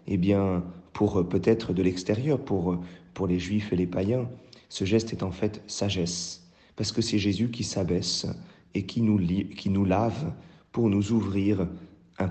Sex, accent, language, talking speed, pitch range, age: male, French, French, 175 wpm, 90-110 Hz, 40-59